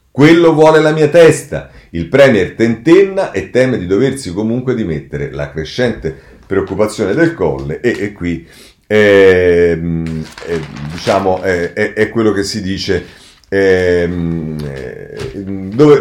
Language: Italian